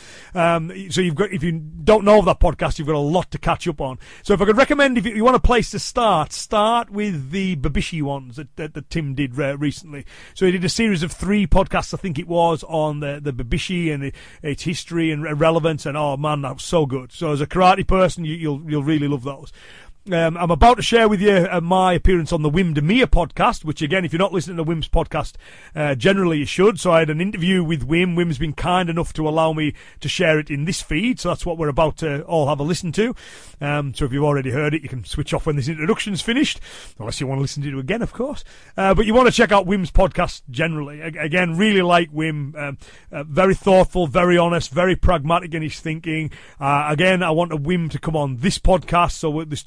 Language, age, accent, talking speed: English, 30-49, British, 250 wpm